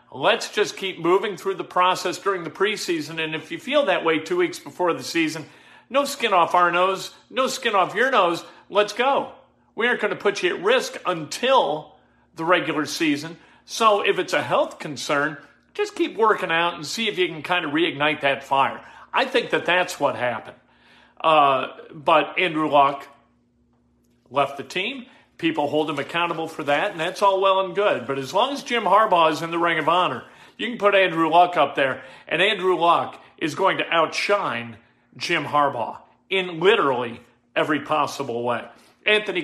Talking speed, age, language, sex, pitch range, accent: 190 wpm, 40-59, English, male, 150-195 Hz, American